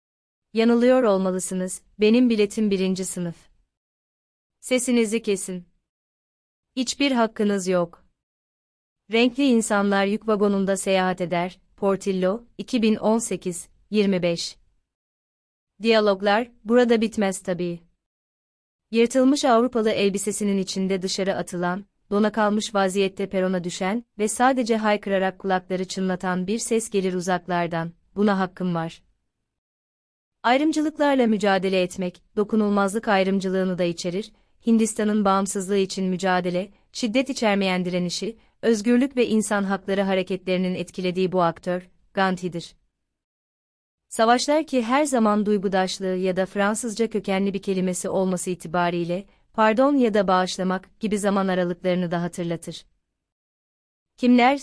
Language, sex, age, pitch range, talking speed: Turkish, female, 30-49, 185-220 Hz, 100 wpm